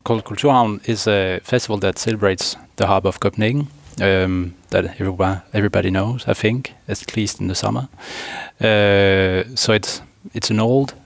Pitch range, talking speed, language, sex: 95-115 Hz, 155 wpm, English, male